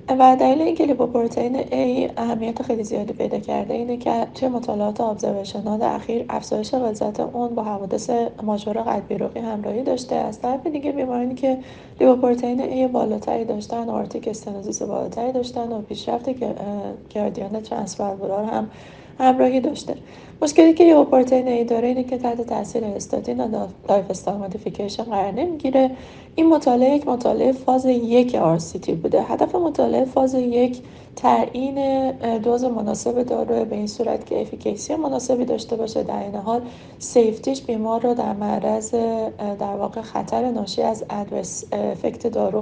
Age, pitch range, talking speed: 30-49, 220-260 Hz, 140 wpm